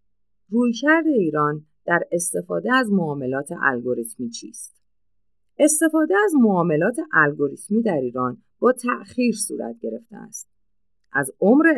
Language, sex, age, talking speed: Persian, female, 50-69, 105 wpm